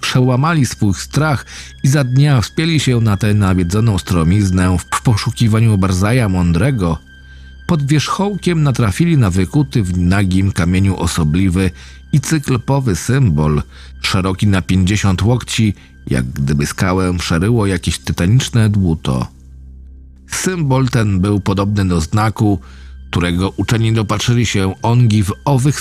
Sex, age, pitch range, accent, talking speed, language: male, 40-59, 80-125 Hz, native, 120 wpm, Polish